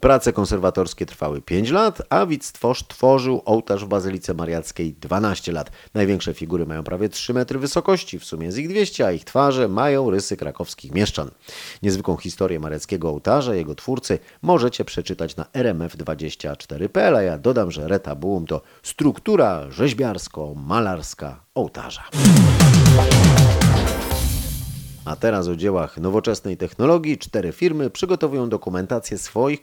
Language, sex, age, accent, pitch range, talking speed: Polish, male, 30-49, native, 85-120 Hz, 130 wpm